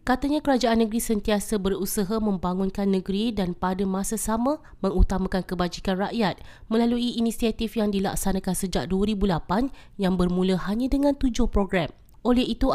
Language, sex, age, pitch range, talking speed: Malay, female, 20-39, 190-230 Hz, 130 wpm